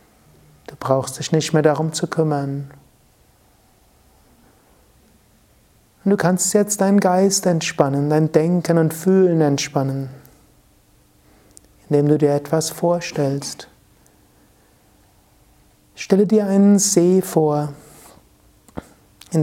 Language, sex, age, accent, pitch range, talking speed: German, male, 60-79, German, 135-165 Hz, 100 wpm